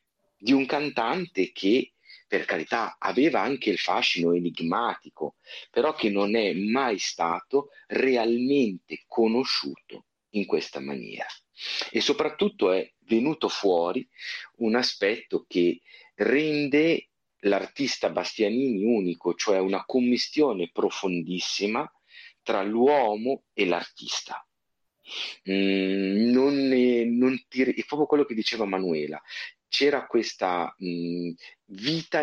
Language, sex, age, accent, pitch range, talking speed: Italian, male, 40-59, native, 90-140 Hz, 105 wpm